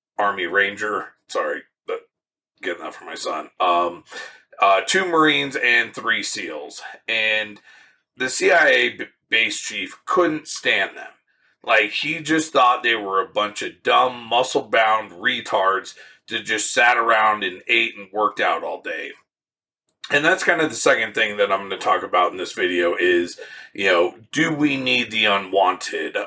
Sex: male